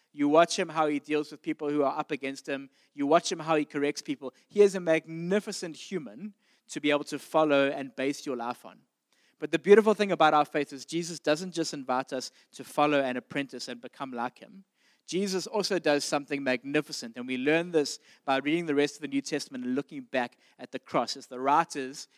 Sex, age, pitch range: male, 20-39, 135-170 Hz